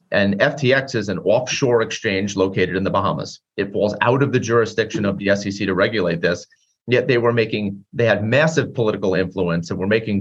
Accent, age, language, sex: American, 30-49, English, male